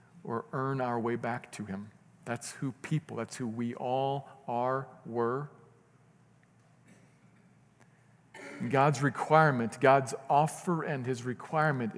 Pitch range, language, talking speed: 115-140 Hz, English, 115 wpm